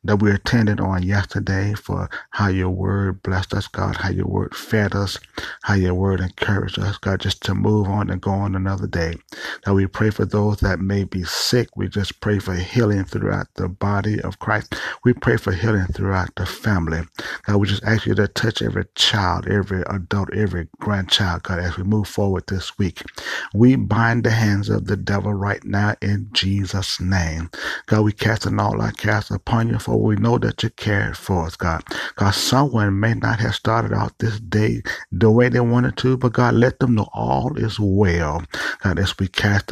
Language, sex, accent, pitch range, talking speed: English, male, American, 95-110 Hz, 200 wpm